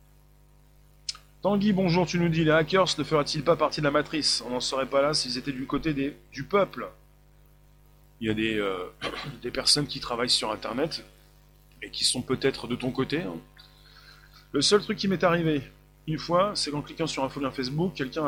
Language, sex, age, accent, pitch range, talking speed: French, male, 30-49, French, 130-165 Hz, 190 wpm